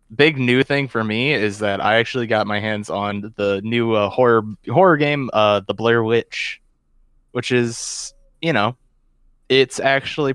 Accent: American